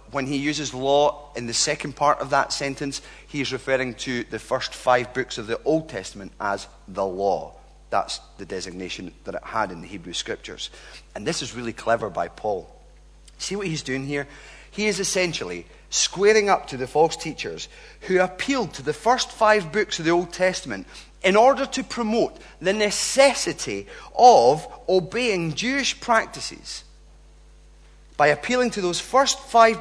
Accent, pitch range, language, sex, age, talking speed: British, 130-210 Hz, English, male, 40-59, 165 wpm